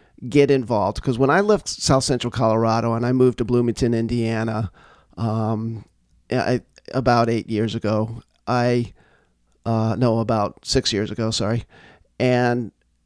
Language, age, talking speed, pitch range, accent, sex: English, 40-59, 135 wpm, 110-135 Hz, American, male